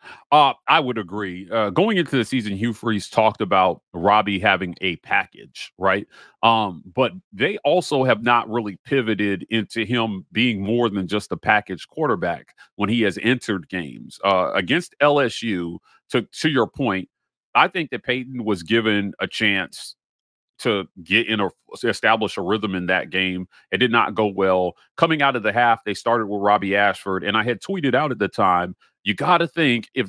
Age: 40-59